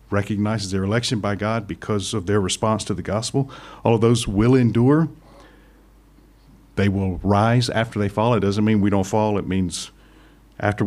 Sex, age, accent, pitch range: male, 50-69, American, 100-130 Hz